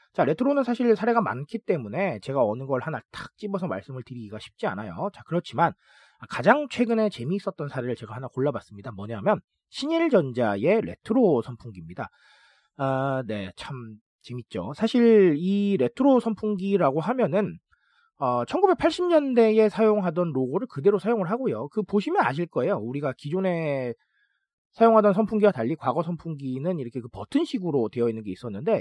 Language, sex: Korean, male